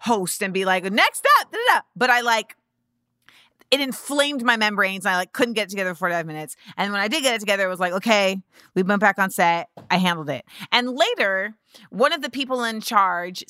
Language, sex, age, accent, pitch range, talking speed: English, female, 30-49, American, 185-235 Hz, 230 wpm